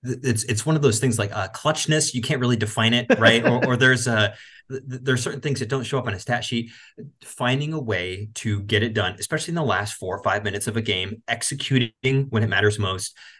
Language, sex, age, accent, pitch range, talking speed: English, male, 30-49, American, 100-125 Hz, 240 wpm